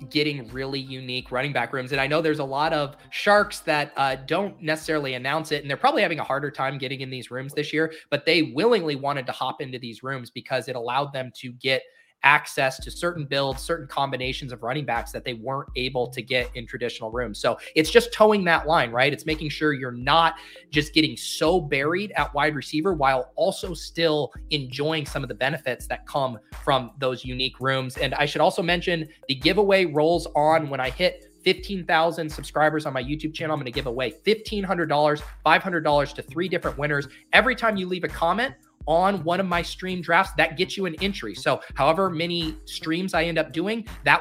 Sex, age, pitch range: male, 20-39, 135-165 Hz